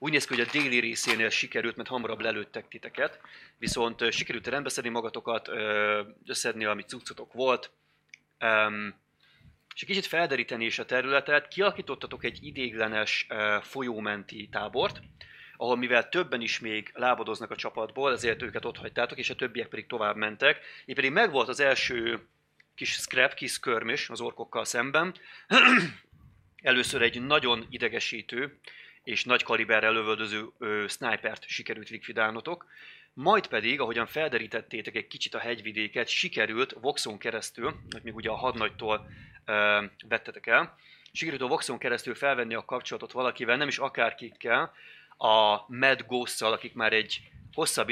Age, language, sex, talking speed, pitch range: 30-49, Hungarian, male, 140 wpm, 110-130 Hz